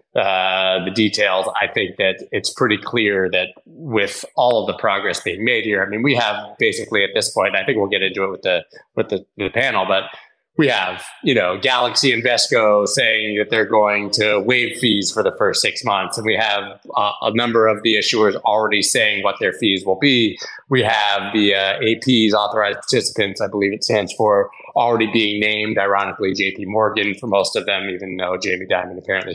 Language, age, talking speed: English, 20-39, 205 wpm